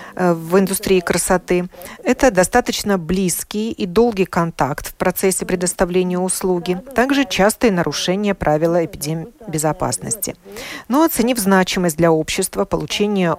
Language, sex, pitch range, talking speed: Russian, female, 165-220 Hz, 110 wpm